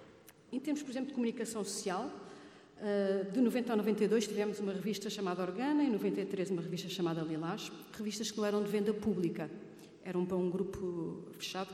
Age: 40-59